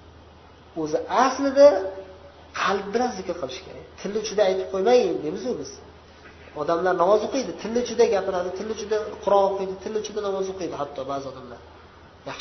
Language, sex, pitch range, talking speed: Bulgarian, male, 160-215 Hz, 185 wpm